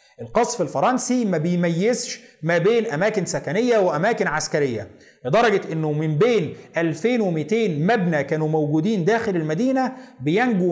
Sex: male